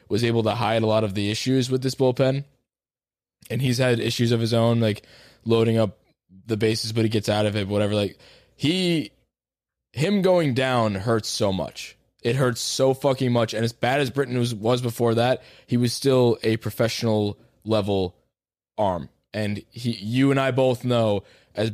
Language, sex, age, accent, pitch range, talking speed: English, male, 20-39, American, 105-130 Hz, 190 wpm